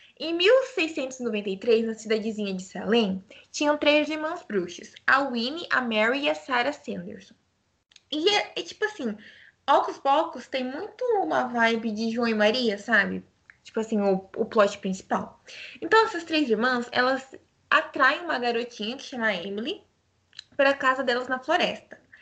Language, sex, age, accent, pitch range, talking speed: Portuguese, female, 20-39, Brazilian, 220-285 Hz, 155 wpm